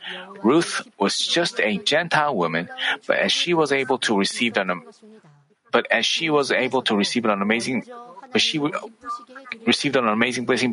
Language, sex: Korean, male